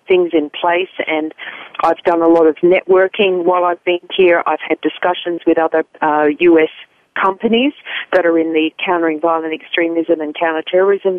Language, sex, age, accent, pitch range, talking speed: English, female, 40-59, Australian, 165-195 Hz, 165 wpm